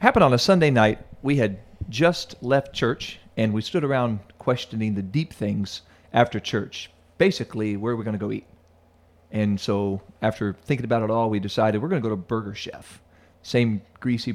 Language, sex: English, male